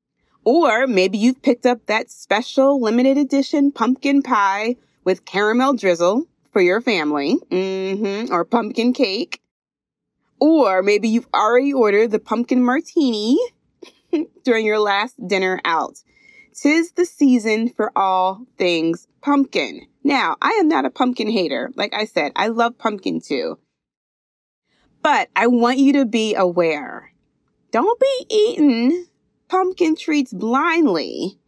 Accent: American